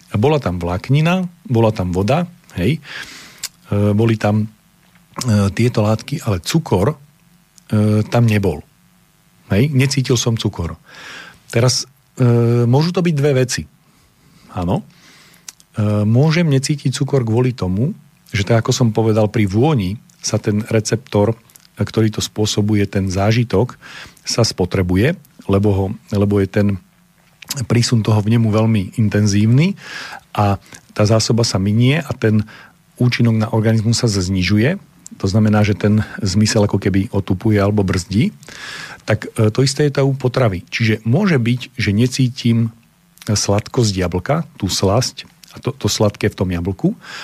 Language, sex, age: Slovak, male, 40-59